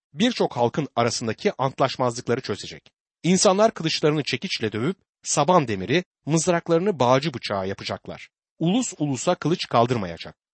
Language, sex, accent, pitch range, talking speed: Turkish, male, native, 120-175 Hz, 110 wpm